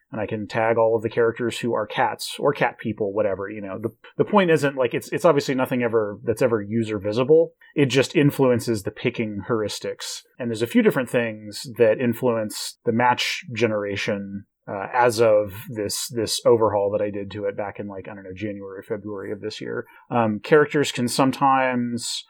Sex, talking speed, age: male, 200 wpm, 30-49